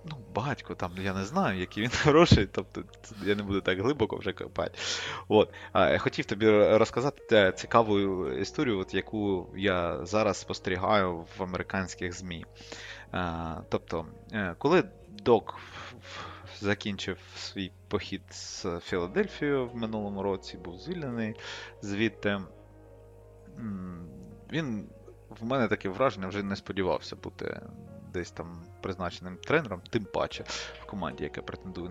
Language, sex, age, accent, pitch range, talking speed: Ukrainian, male, 20-39, native, 95-125 Hz, 130 wpm